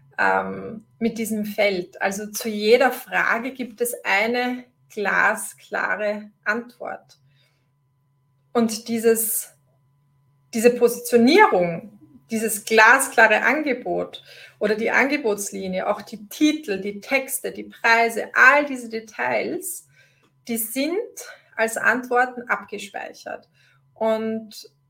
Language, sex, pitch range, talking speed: German, female, 210-250 Hz, 90 wpm